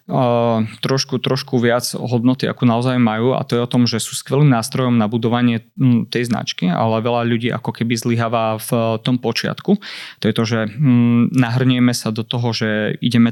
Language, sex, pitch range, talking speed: Slovak, male, 115-125 Hz, 175 wpm